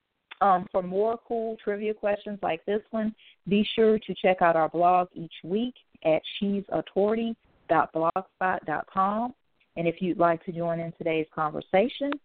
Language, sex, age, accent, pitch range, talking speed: English, female, 40-59, American, 165-205 Hz, 140 wpm